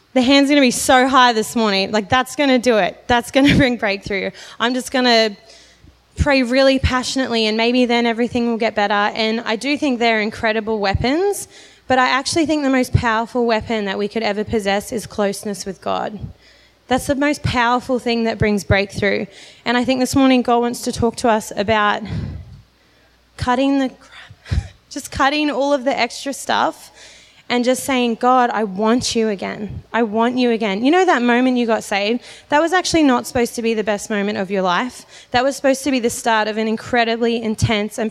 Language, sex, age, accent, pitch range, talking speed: English, female, 20-39, Australian, 215-255 Hz, 205 wpm